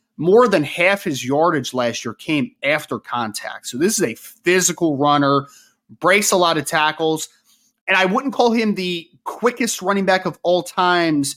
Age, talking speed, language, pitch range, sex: 20-39, 175 wpm, English, 145-195 Hz, male